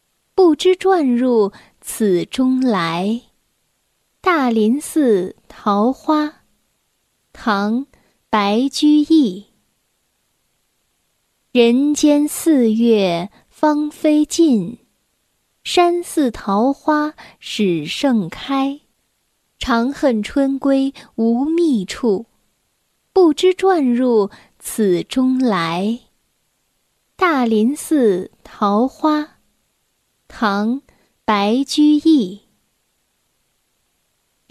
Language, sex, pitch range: Chinese, female, 215-300 Hz